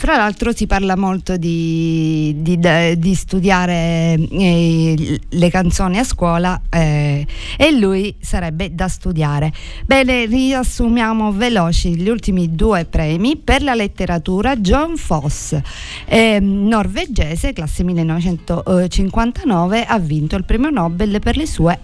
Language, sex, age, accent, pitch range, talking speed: Italian, female, 50-69, native, 165-215 Hz, 120 wpm